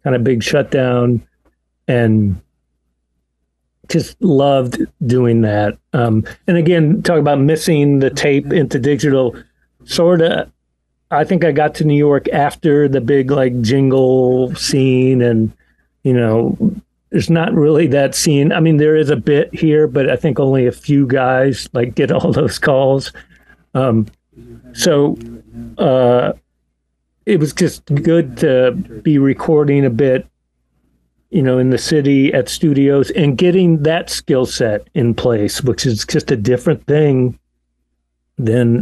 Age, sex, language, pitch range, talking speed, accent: 50-69, male, English, 115-150 Hz, 145 wpm, American